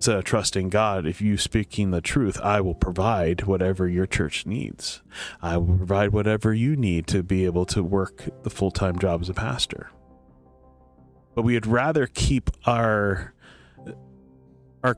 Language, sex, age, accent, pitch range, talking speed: English, male, 30-49, American, 85-110 Hz, 160 wpm